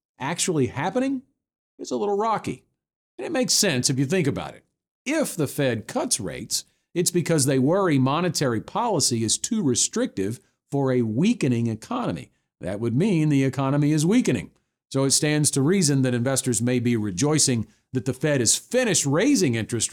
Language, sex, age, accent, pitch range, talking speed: English, male, 50-69, American, 115-155 Hz, 170 wpm